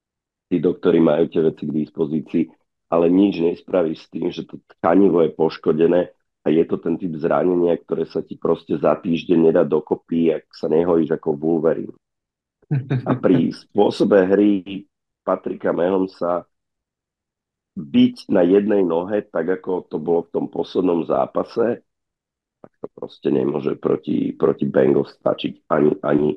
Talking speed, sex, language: 145 wpm, male, Slovak